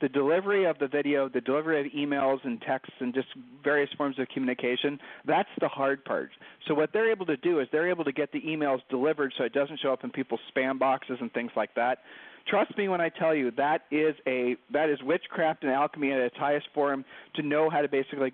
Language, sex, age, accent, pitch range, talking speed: English, male, 40-59, American, 135-170 Hz, 230 wpm